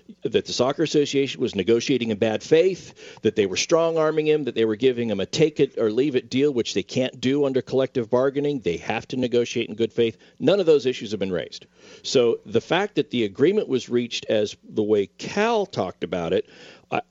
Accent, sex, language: American, male, English